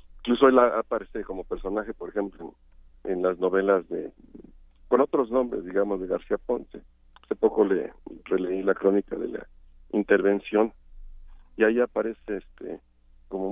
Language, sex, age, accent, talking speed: Spanish, male, 50-69, Mexican, 145 wpm